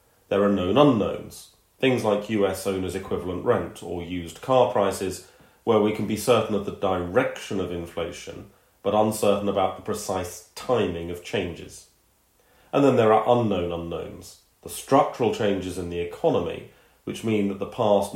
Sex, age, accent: male, 30-49, British